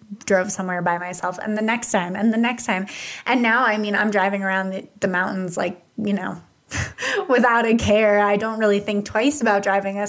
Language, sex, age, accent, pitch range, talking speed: English, female, 20-39, American, 190-225 Hz, 215 wpm